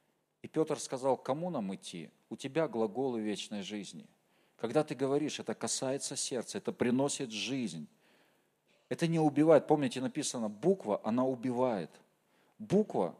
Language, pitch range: Russian, 130-185 Hz